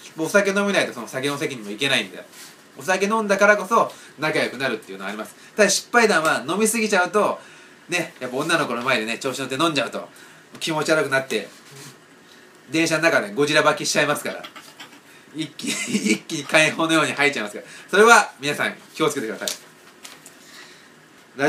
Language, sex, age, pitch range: Japanese, male, 30-49, 140-200 Hz